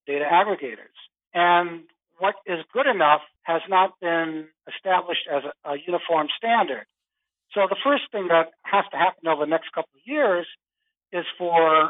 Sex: male